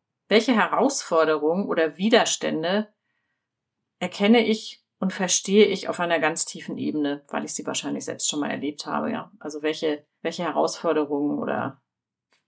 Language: German